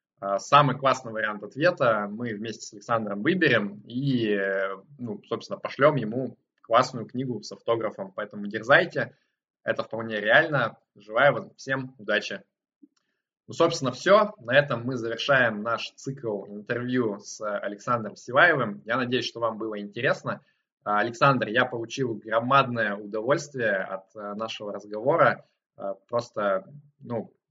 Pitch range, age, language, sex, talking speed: 110-140 Hz, 20-39, Russian, male, 120 wpm